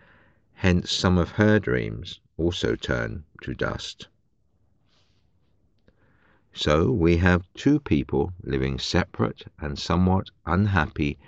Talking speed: 100 wpm